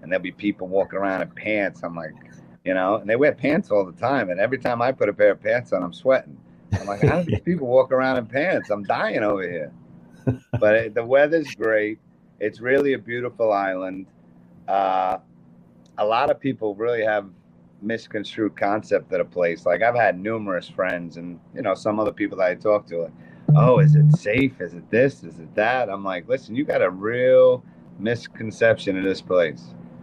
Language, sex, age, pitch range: English, male, 30-49, 85-115 Hz